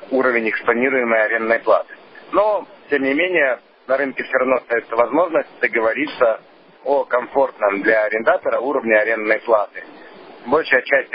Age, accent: 50-69, native